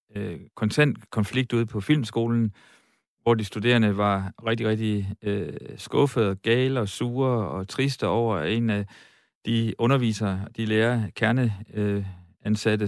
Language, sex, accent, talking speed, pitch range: Danish, male, native, 120 wpm, 105-130 Hz